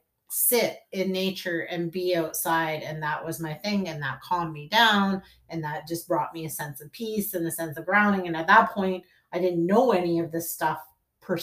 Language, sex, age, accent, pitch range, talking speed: English, female, 30-49, American, 160-200 Hz, 220 wpm